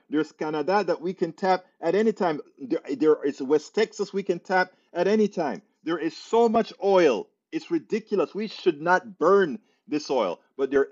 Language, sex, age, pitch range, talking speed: English, male, 40-59, 135-200 Hz, 190 wpm